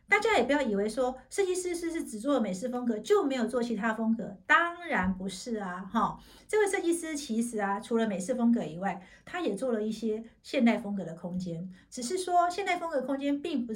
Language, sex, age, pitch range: Chinese, female, 50-69, 200-270 Hz